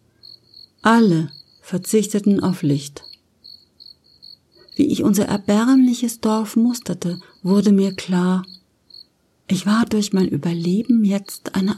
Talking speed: 100 wpm